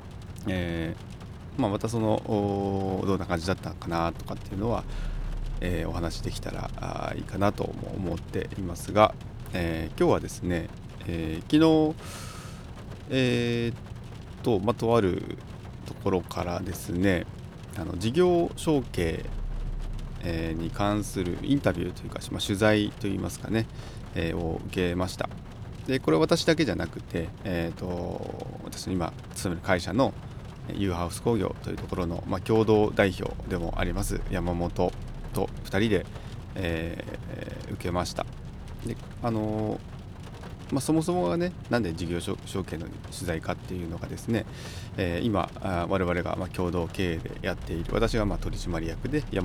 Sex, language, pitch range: male, Japanese, 90-115 Hz